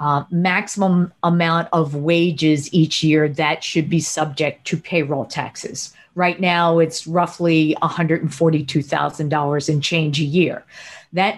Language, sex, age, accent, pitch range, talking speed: English, female, 40-59, American, 155-200 Hz, 125 wpm